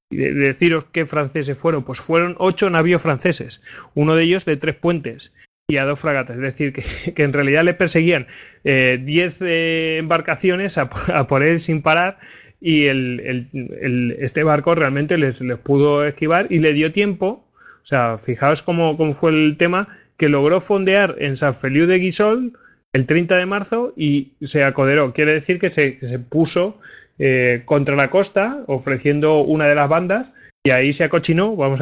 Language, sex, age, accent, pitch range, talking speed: Spanish, male, 30-49, Spanish, 140-165 Hz, 180 wpm